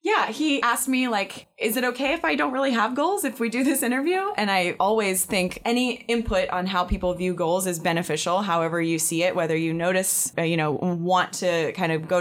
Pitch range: 160-200 Hz